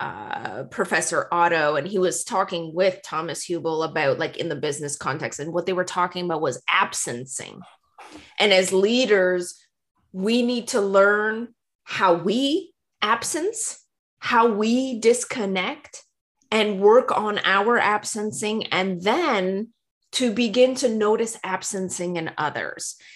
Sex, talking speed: female, 130 wpm